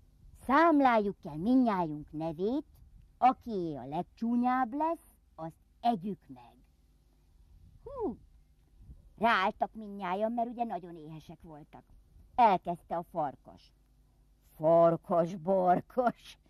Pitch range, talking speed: 155-240 Hz, 85 wpm